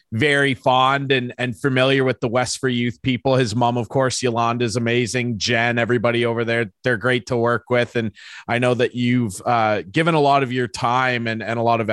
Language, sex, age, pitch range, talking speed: English, male, 30-49, 110-135 Hz, 220 wpm